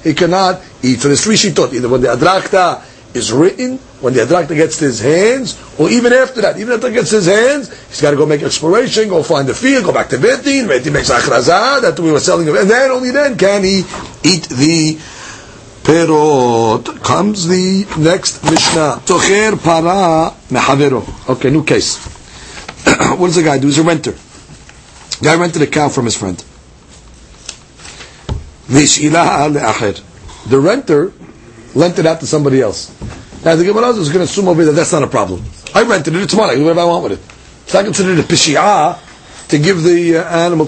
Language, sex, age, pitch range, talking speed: English, male, 50-69, 145-200 Hz, 195 wpm